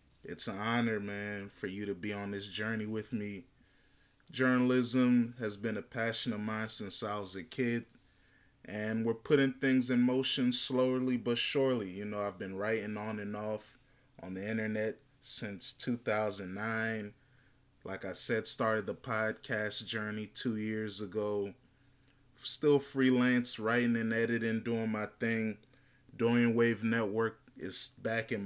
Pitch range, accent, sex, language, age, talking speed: 110-125 Hz, American, male, English, 20-39, 150 wpm